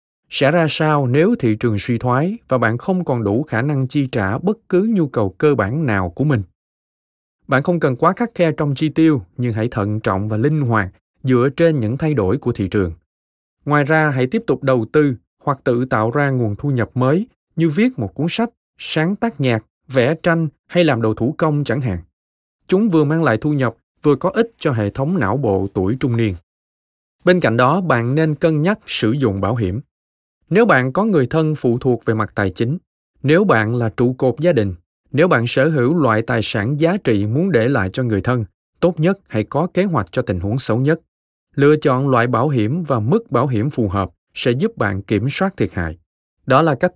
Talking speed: 225 wpm